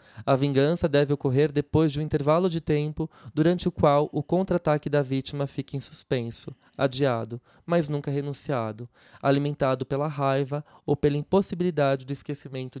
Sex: male